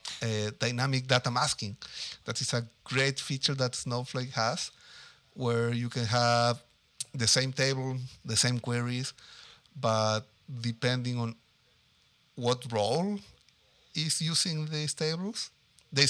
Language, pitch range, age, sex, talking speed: English, 120-140 Hz, 50-69, male, 120 wpm